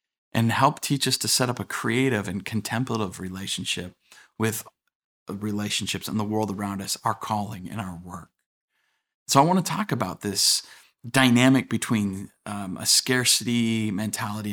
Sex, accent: male, American